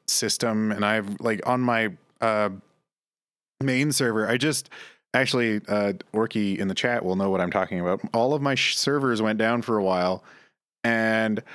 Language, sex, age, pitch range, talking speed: English, male, 30-49, 105-130 Hz, 170 wpm